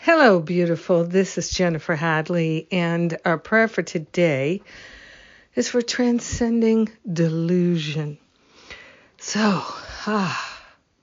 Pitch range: 160-185 Hz